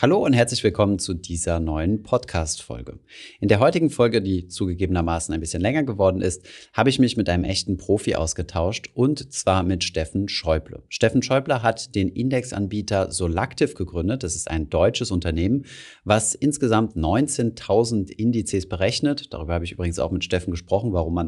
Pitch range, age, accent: 90-115 Hz, 30-49, German